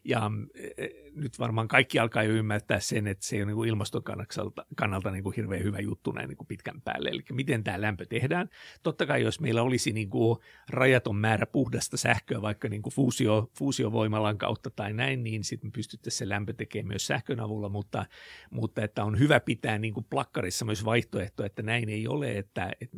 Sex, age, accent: male, 50-69, native